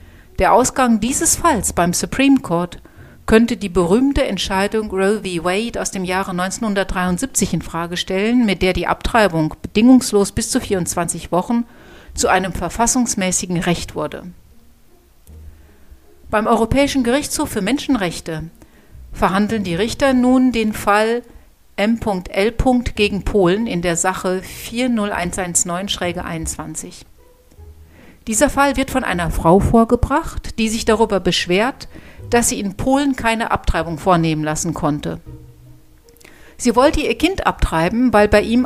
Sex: female